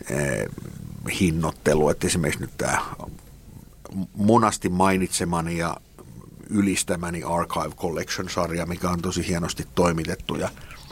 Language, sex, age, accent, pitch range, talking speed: Finnish, male, 50-69, native, 85-100 Hz, 95 wpm